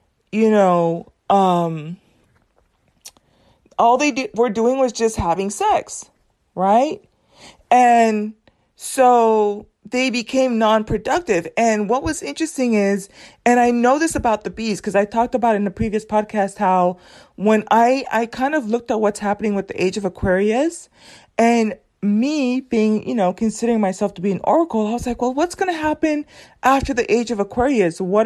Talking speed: 170 wpm